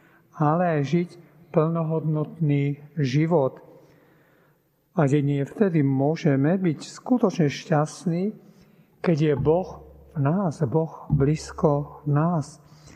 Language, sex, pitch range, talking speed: Slovak, male, 150-170 Hz, 95 wpm